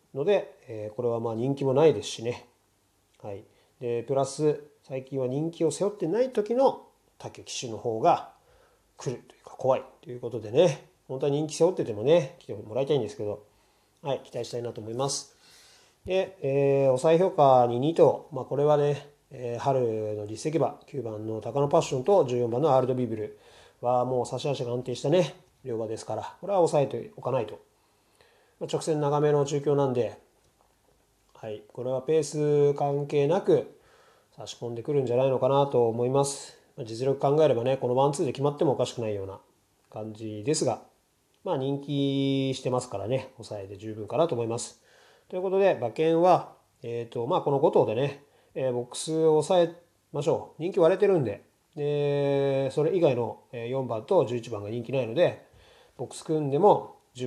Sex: male